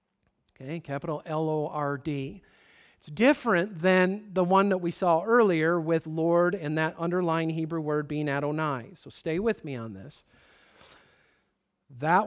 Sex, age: male, 50-69